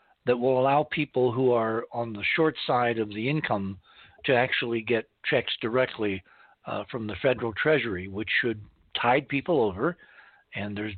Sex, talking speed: male, 165 wpm